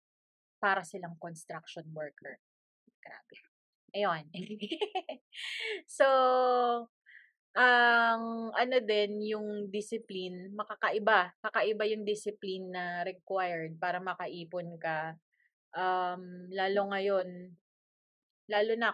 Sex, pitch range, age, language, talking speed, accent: female, 185-235 Hz, 20-39, Filipino, 80 wpm, native